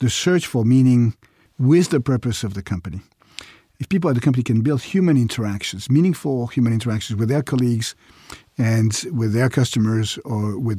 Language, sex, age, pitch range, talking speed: English, male, 50-69, 110-145 Hz, 170 wpm